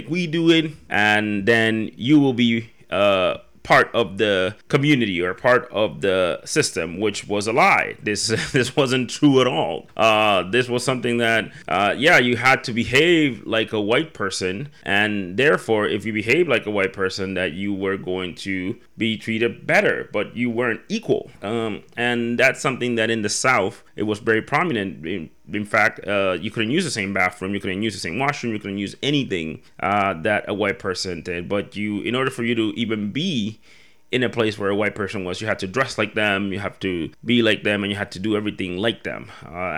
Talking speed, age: 210 wpm, 30-49